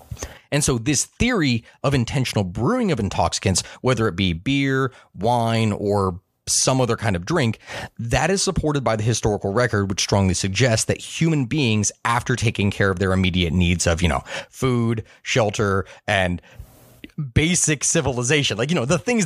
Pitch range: 105-140 Hz